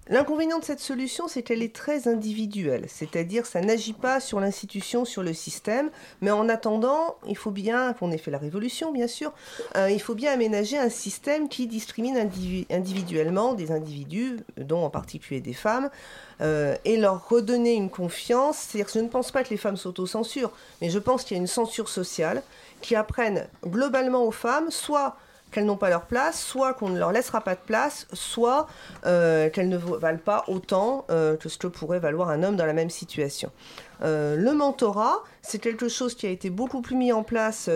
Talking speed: 200 wpm